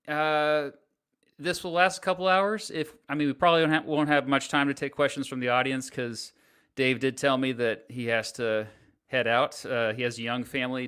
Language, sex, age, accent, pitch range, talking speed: English, male, 30-49, American, 125-160 Hz, 220 wpm